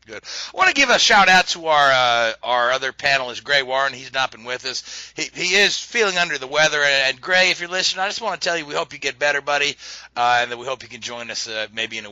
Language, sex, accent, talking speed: English, male, American, 285 wpm